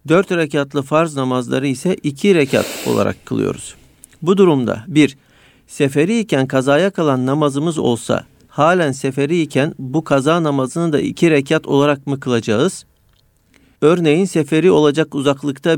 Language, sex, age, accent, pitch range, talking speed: Turkish, male, 50-69, native, 135-165 Hz, 130 wpm